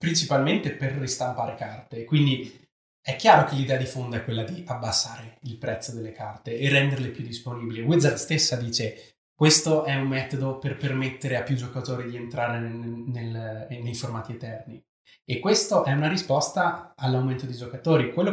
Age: 20-39